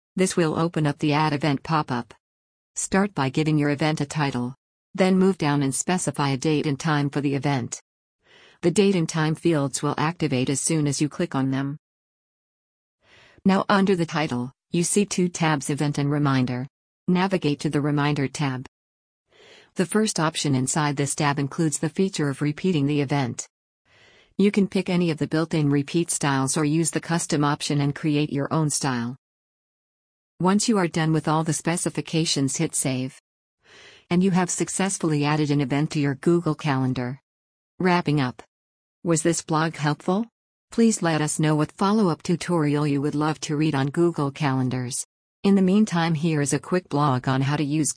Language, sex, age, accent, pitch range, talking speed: English, female, 50-69, American, 140-170 Hz, 180 wpm